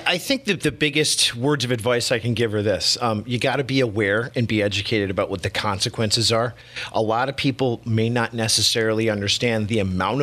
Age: 40-59